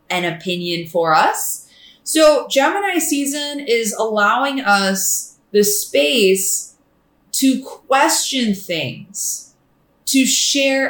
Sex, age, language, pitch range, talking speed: female, 20-39, English, 200-255 Hz, 95 wpm